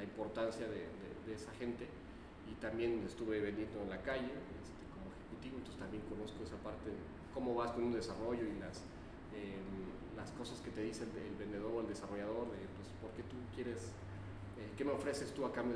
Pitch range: 100-120 Hz